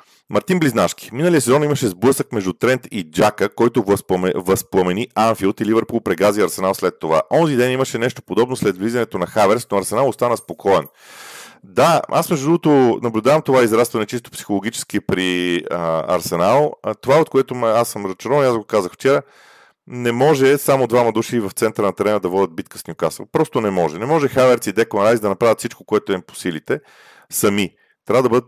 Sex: male